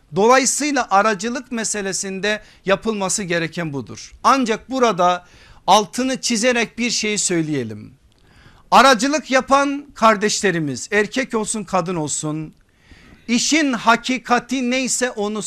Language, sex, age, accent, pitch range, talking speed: Turkish, male, 50-69, native, 175-235 Hz, 95 wpm